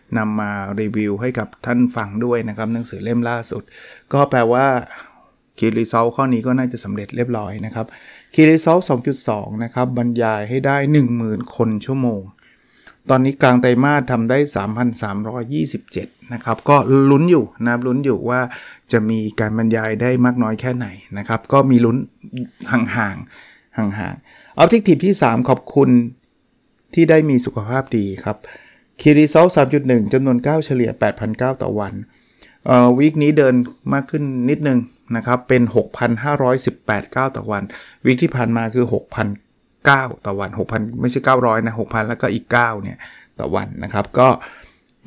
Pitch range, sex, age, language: 115-135 Hz, male, 20-39, Thai